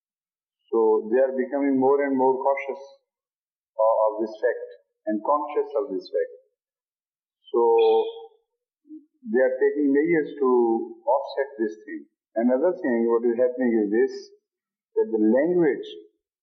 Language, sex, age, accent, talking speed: English, male, 50-69, Indian, 130 wpm